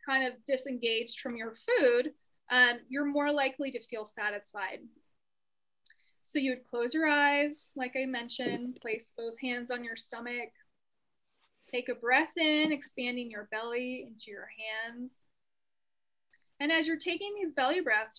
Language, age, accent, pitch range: English, 20-39, American, 225-285 Hz